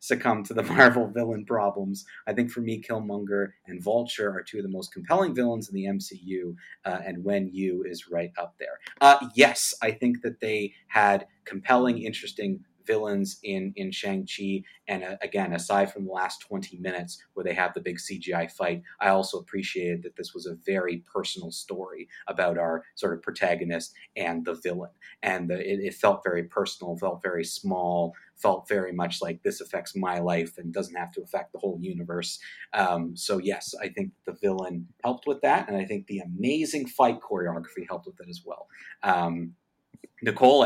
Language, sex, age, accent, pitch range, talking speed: English, male, 30-49, American, 90-115 Hz, 185 wpm